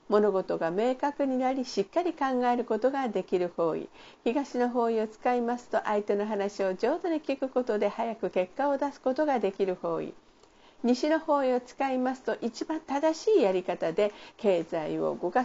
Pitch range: 200-280 Hz